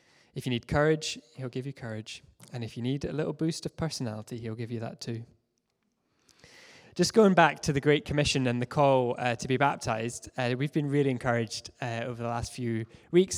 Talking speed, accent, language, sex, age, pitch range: 210 wpm, British, English, male, 10-29, 120-145 Hz